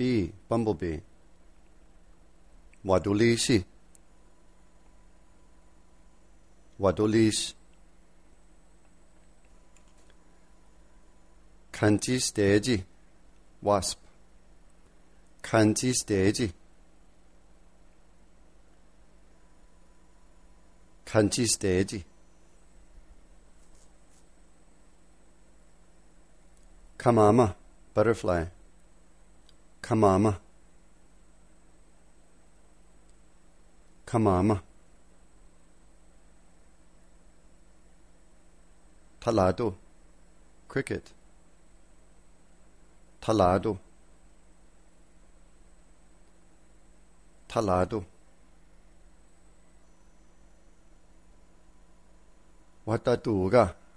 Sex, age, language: male, 50-69, English